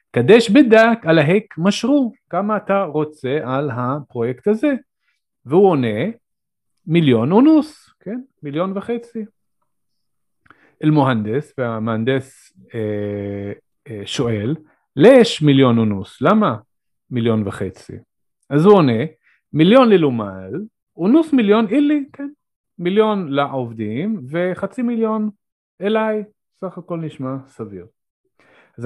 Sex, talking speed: male, 100 wpm